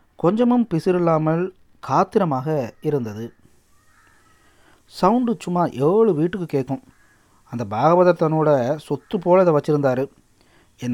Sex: male